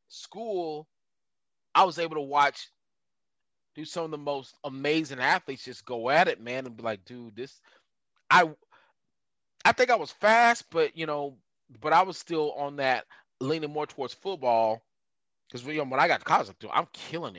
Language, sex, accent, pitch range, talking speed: English, male, American, 120-185 Hz, 185 wpm